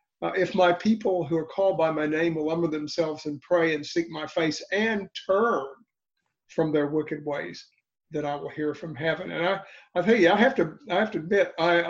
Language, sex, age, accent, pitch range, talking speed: English, male, 50-69, American, 155-190 Hz, 220 wpm